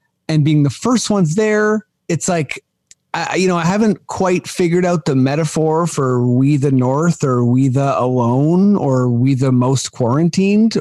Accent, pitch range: American, 125-160 Hz